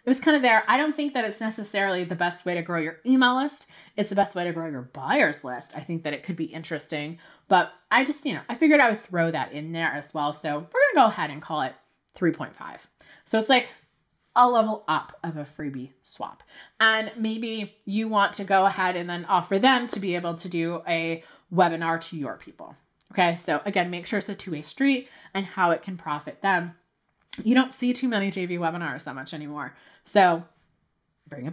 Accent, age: American, 20-39